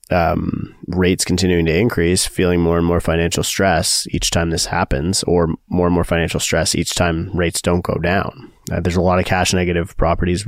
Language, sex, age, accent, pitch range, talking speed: English, male, 20-39, American, 85-95 Hz, 200 wpm